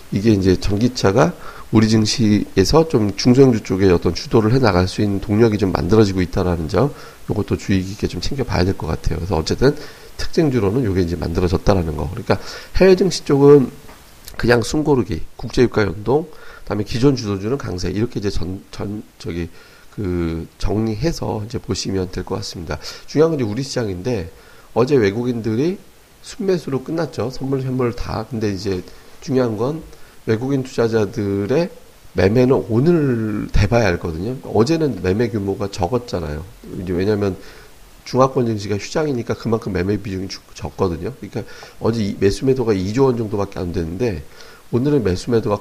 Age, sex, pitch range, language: 40-59, male, 95-125 Hz, Korean